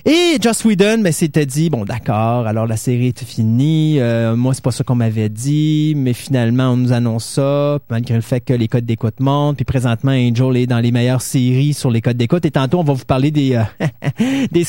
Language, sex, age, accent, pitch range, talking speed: French, male, 30-49, Canadian, 130-205 Hz, 230 wpm